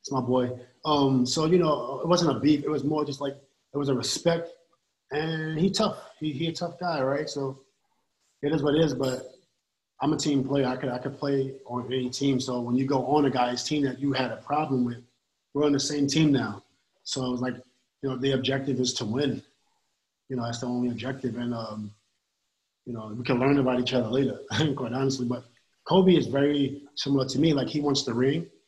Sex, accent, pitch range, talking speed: male, American, 125-160 Hz, 230 wpm